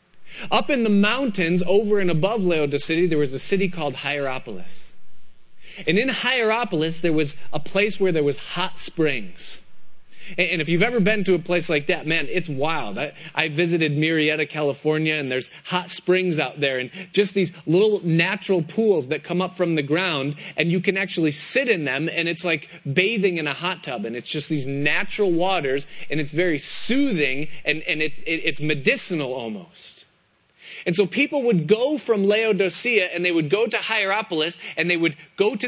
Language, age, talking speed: English, 30-49, 185 wpm